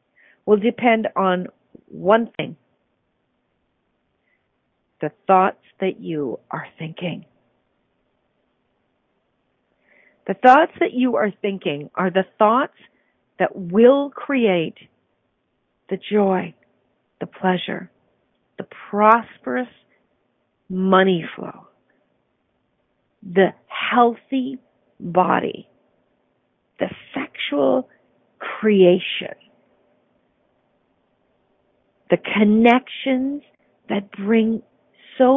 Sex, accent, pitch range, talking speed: female, American, 185-245 Hz, 70 wpm